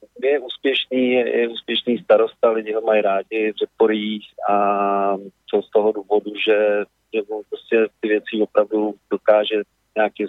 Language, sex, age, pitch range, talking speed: Slovak, male, 40-59, 105-130 Hz, 135 wpm